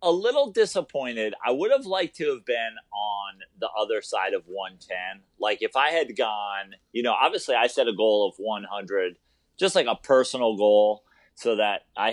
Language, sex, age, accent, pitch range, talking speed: English, male, 30-49, American, 105-145 Hz, 190 wpm